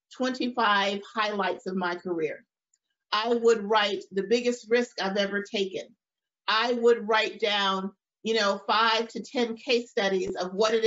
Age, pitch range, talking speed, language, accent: 40-59, 190-230 Hz, 155 wpm, English, American